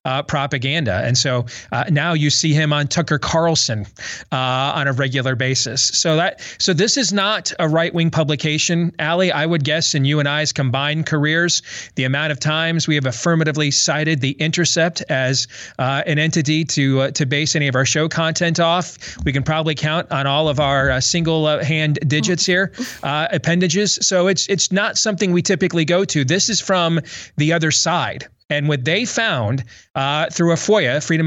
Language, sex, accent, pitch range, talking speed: English, male, American, 140-175 Hz, 195 wpm